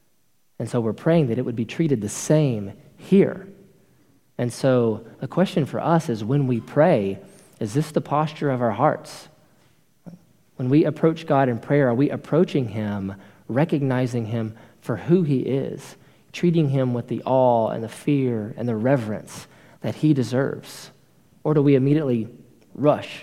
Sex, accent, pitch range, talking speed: male, American, 120-155 Hz, 165 wpm